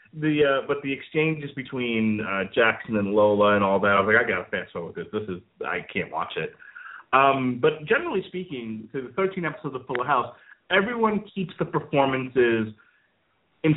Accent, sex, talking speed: American, male, 190 wpm